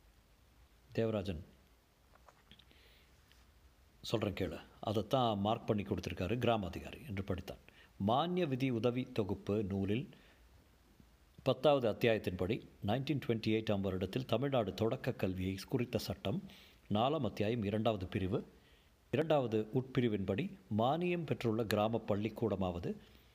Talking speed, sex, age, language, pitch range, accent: 95 wpm, male, 50-69, Tamil, 95-135 Hz, native